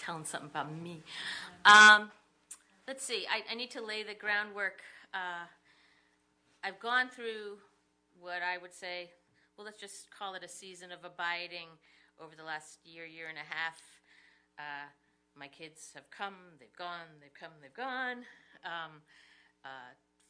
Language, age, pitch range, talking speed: English, 50-69, 155-195 Hz, 155 wpm